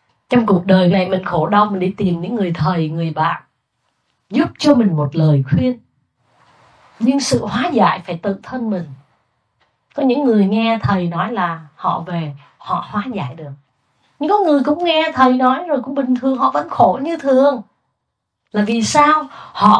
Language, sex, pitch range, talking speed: Vietnamese, female, 170-255 Hz, 190 wpm